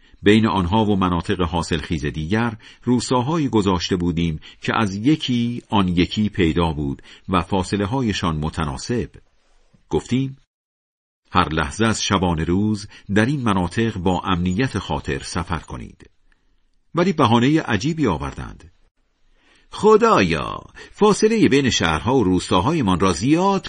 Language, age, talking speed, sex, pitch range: Persian, 50-69, 115 wpm, male, 90-135 Hz